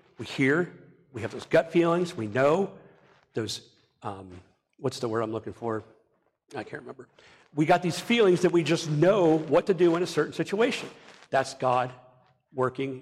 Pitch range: 135-180 Hz